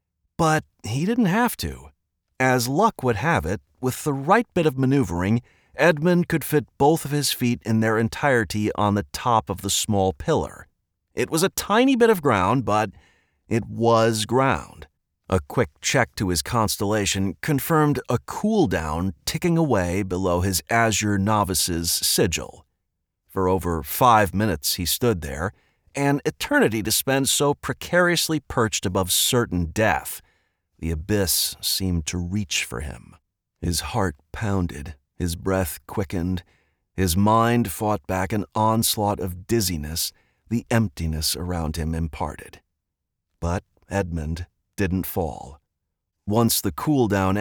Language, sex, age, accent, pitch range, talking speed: English, male, 40-59, American, 90-120 Hz, 140 wpm